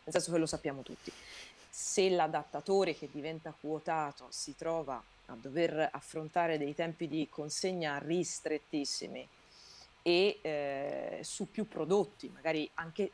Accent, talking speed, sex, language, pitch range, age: native, 130 wpm, female, Italian, 150-185 Hz, 30-49